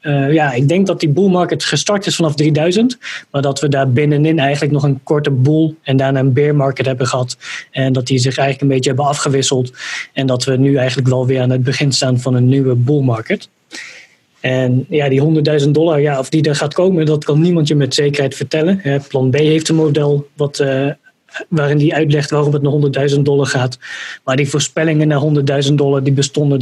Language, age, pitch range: Dutch, 20-39, 135-160 Hz